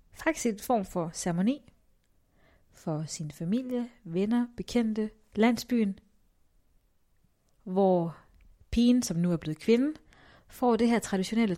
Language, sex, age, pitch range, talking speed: Danish, female, 30-49, 160-220 Hz, 120 wpm